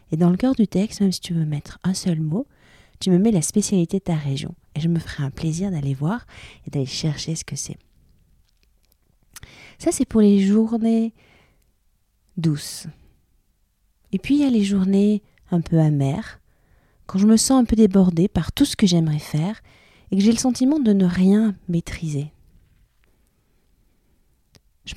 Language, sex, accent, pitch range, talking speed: French, female, French, 155-210 Hz, 180 wpm